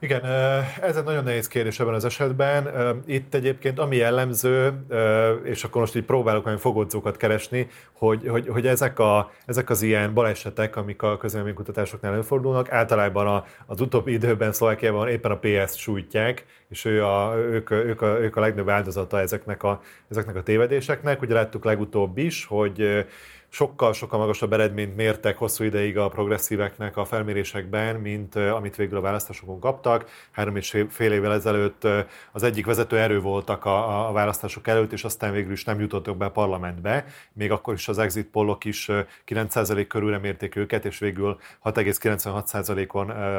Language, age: Hungarian, 30-49